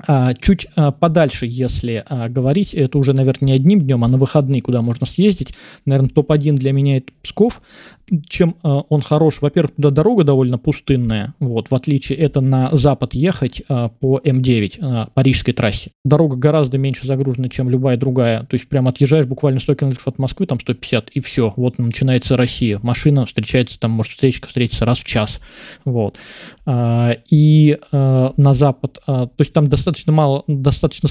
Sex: male